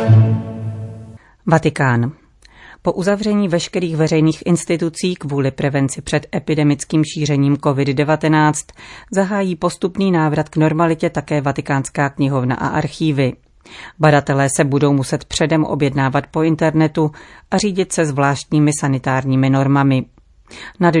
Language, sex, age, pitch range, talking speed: Czech, female, 40-59, 140-165 Hz, 105 wpm